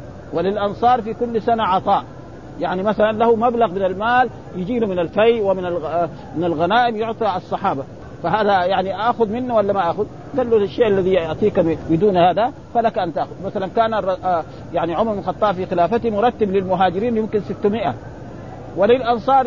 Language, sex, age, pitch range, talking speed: Arabic, male, 50-69, 175-235 Hz, 150 wpm